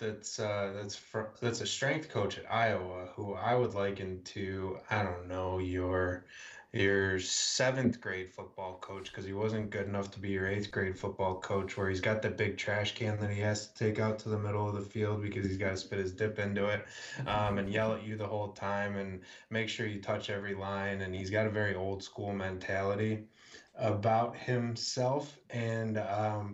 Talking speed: 195 wpm